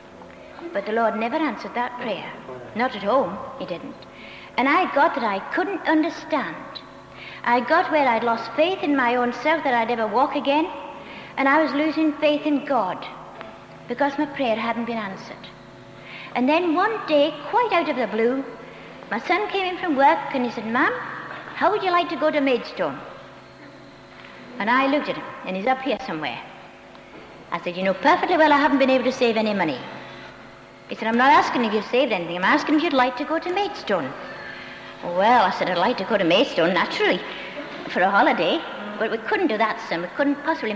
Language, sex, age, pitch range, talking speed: English, female, 60-79, 230-310 Hz, 205 wpm